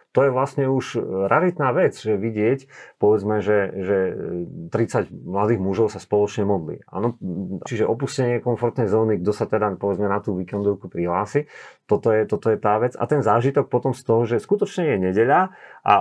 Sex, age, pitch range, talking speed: male, 40-59, 100-130 Hz, 175 wpm